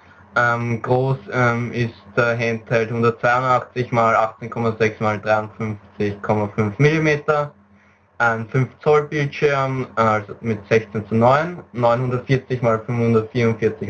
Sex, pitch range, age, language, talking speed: male, 110-125 Hz, 20-39, German, 105 wpm